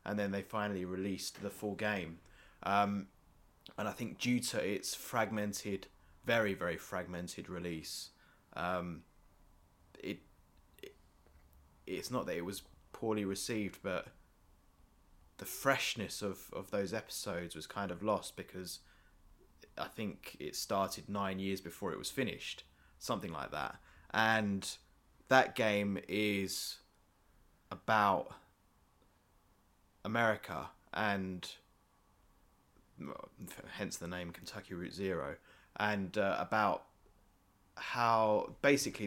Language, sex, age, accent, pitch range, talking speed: English, male, 20-39, British, 90-105 Hz, 110 wpm